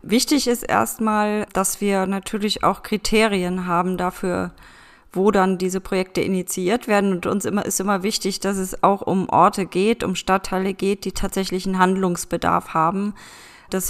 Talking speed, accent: 160 wpm, German